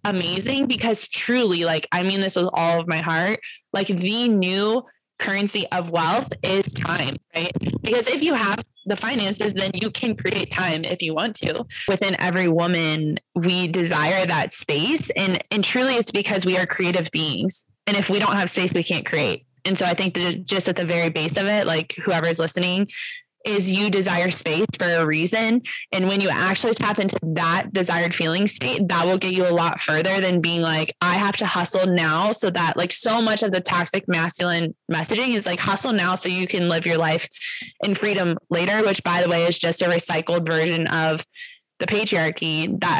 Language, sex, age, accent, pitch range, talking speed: English, female, 20-39, American, 170-205 Hz, 200 wpm